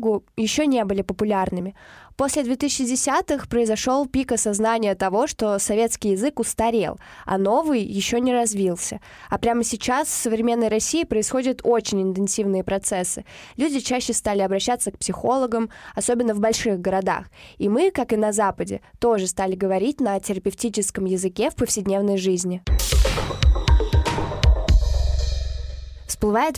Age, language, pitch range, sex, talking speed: 20-39, Russian, 200-245 Hz, female, 125 wpm